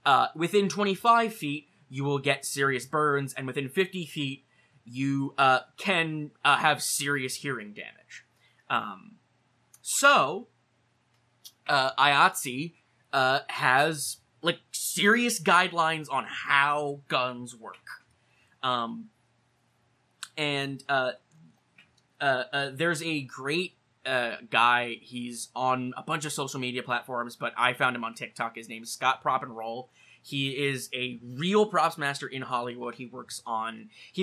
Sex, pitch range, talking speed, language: male, 125-150 Hz, 135 wpm, English